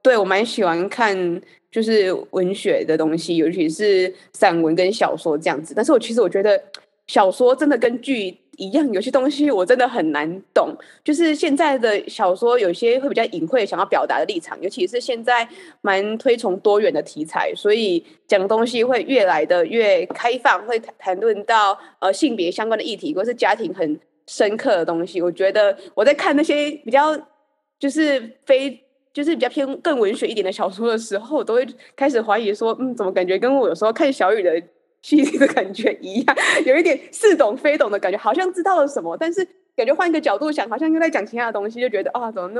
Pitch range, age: 200-300 Hz, 20-39